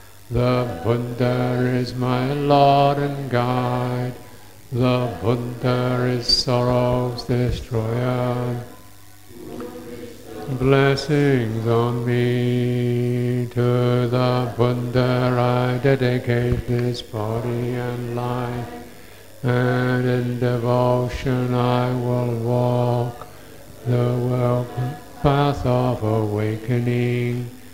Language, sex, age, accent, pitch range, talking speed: English, male, 60-79, American, 120-125 Hz, 75 wpm